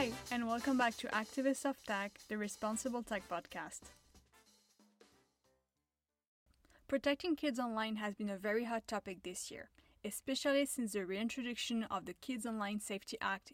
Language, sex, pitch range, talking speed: English, female, 200-255 Hz, 145 wpm